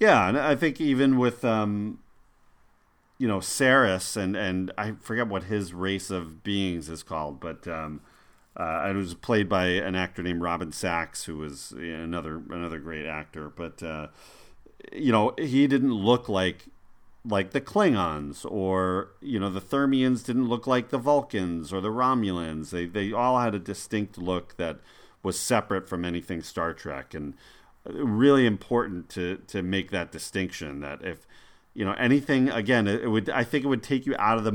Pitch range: 90-120 Hz